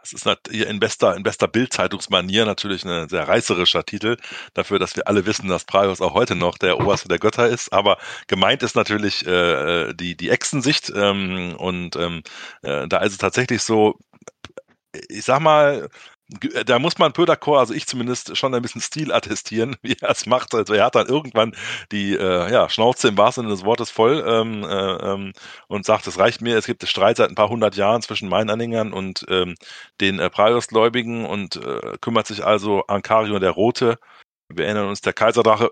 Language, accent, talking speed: German, German, 190 wpm